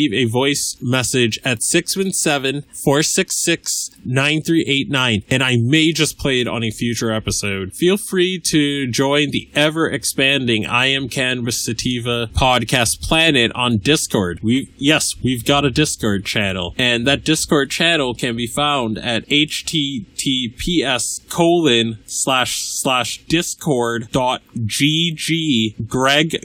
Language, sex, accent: English, male, American